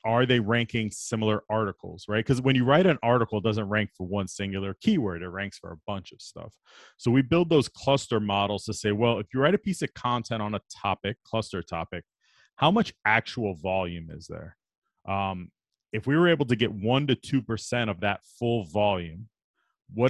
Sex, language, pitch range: male, English, 100-120 Hz